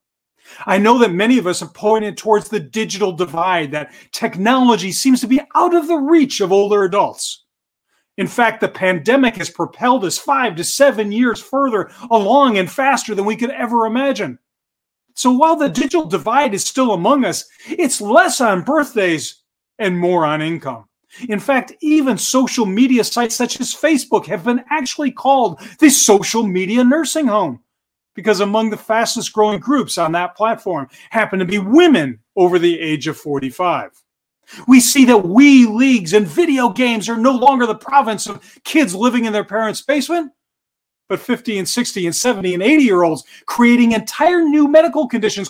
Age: 40-59